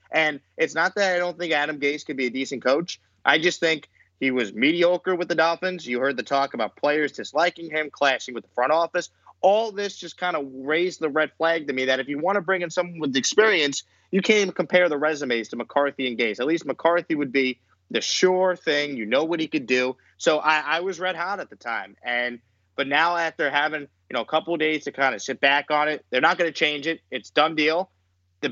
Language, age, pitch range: English, 30-49, 135-165 Hz